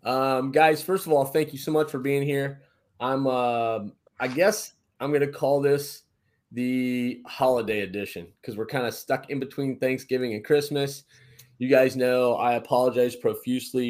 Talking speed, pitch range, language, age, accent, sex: 175 wpm, 115-140 Hz, English, 30-49, American, male